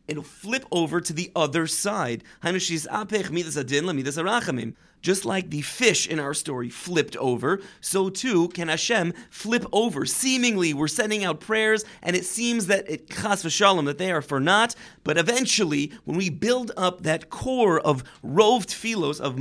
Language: English